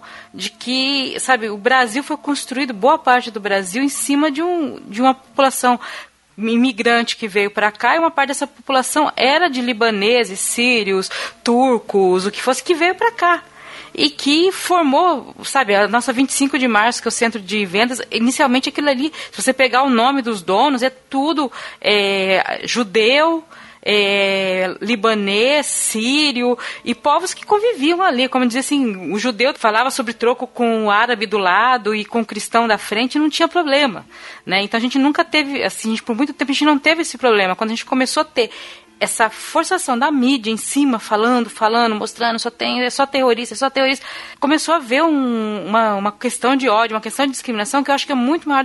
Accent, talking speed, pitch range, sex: Brazilian, 190 wpm, 225-285 Hz, female